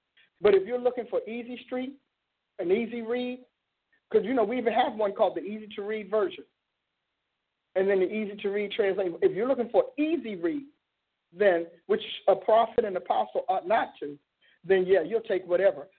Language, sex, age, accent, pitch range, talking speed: English, male, 50-69, American, 195-260 Hz, 175 wpm